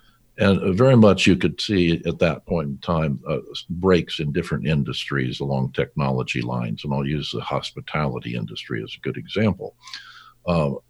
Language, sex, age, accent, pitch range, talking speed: English, male, 60-79, American, 65-100 Hz, 165 wpm